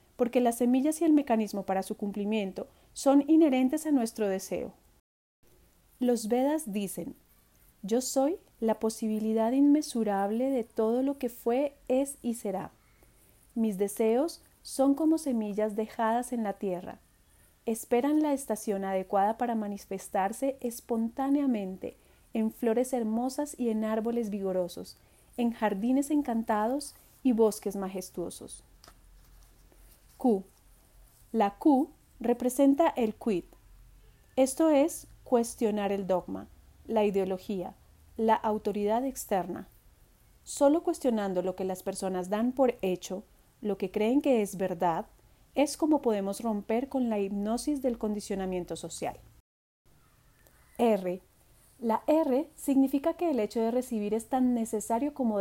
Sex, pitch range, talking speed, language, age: female, 200-260 Hz, 120 wpm, Spanish, 30-49